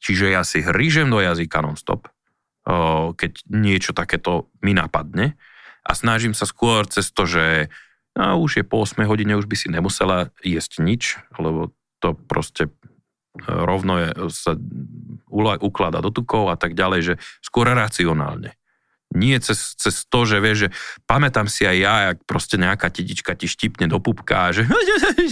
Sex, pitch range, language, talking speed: male, 90-120 Hz, Slovak, 160 wpm